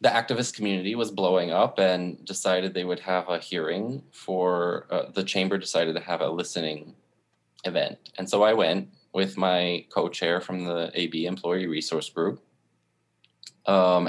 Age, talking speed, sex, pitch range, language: 20-39, 160 wpm, male, 80-100 Hz, English